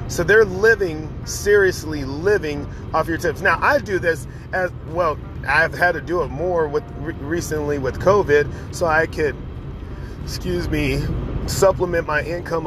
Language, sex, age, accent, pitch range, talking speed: English, male, 40-59, American, 140-180 Hz, 150 wpm